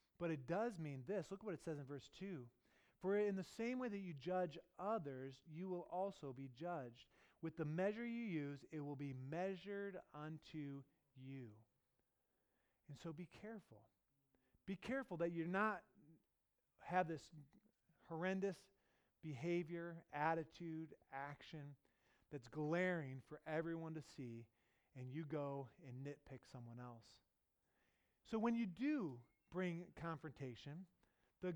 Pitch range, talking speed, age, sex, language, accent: 145-205 Hz, 135 wpm, 30-49, male, English, American